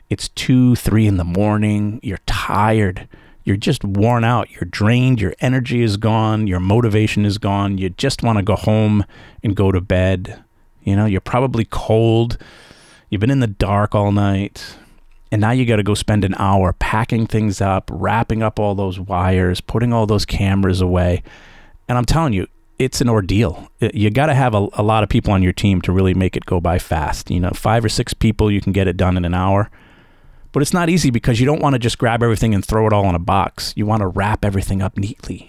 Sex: male